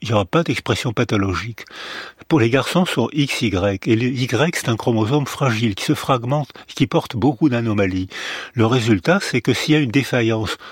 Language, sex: French, male